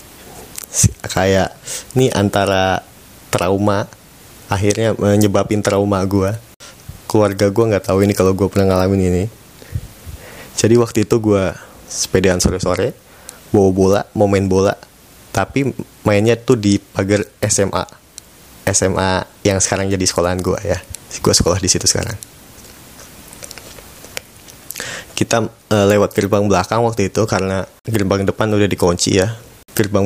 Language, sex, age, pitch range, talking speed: Indonesian, male, 20-39, 95-110 Hz, 120 wpm